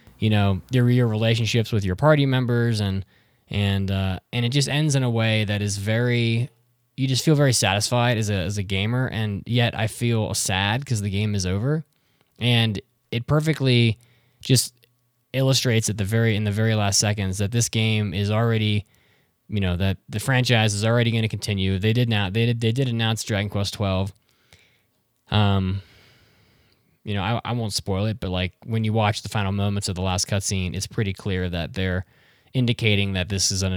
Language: English